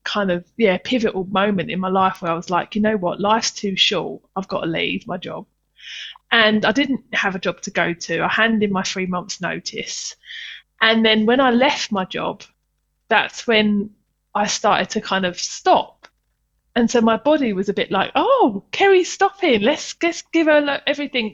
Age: 20-39